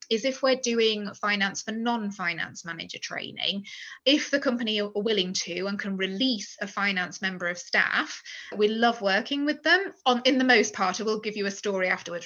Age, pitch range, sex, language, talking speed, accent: 20-39, 190-250 Hz, female, English, 200 wpm, British